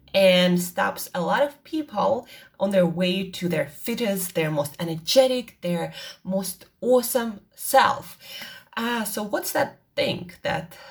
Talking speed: 140 wpm